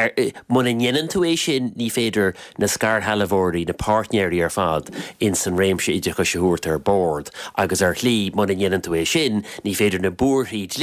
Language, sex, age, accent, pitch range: English, male, 30-49, Irish, 95-125 Hz